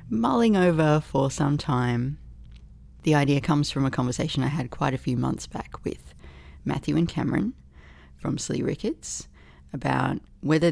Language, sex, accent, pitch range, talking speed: English, female, Australian, 120-160 Hz, 150 wpm